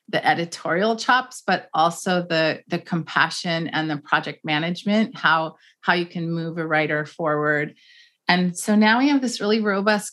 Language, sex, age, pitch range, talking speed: English, female, 30-49, 170-205 Hz, 165 wpm